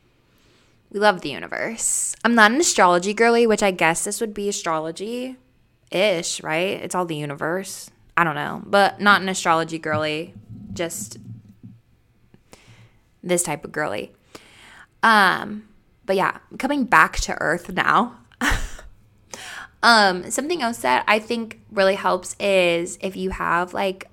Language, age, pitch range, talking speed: English, 20-39, 155-200 Hz, 135 wpm